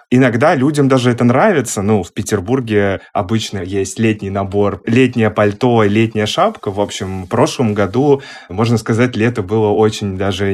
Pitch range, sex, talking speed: 105-130 Hz, male, 160 wpm